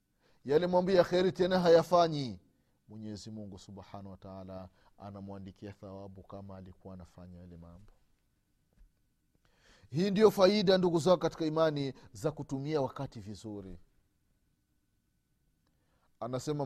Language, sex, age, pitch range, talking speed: Swahili, male, 30-49, 100-165 Hz, 95 wpm